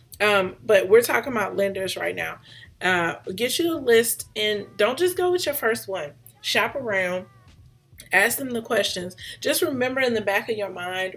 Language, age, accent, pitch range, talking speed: English, 30-49, American, 175-235 Hz, 190 wpm